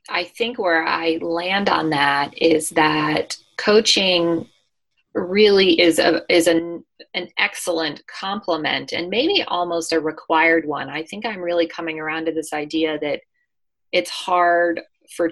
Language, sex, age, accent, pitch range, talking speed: English, female, 30-49, American, 155-175 Hz, 145 wpm